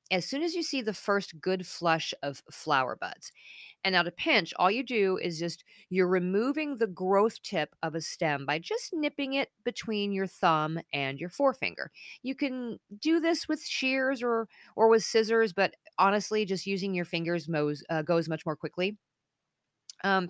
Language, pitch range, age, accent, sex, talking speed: English, 165-235 Hz, 40-59, American, female, 185 wpm